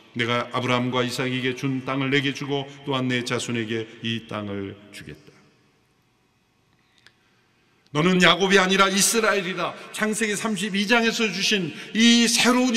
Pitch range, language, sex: 145-235 Hz, Korean, male